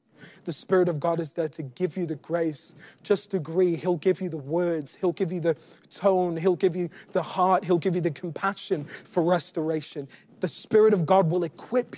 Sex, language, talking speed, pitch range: male, English, 205 wpm, 155-185 Hz